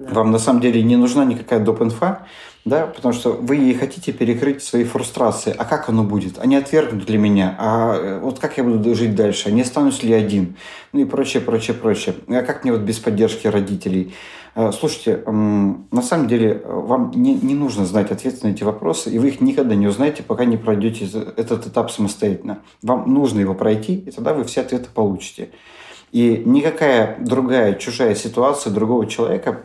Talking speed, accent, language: 185 wpm, native, Russian